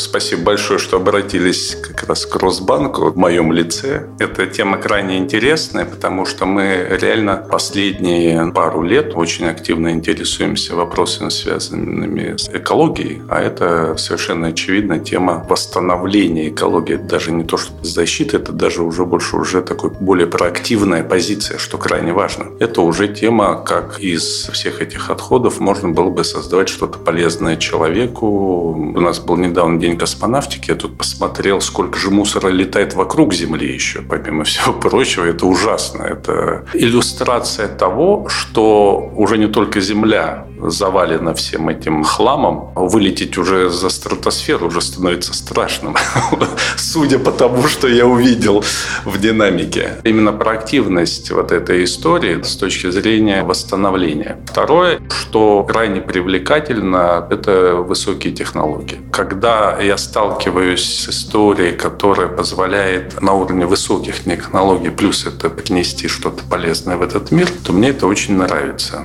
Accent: native